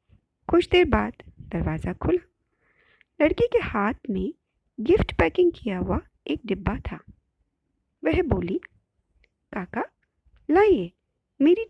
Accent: native